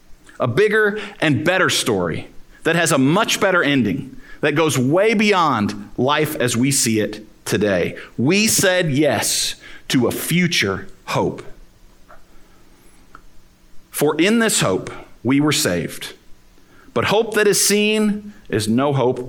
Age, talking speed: 50-69, 135 wpm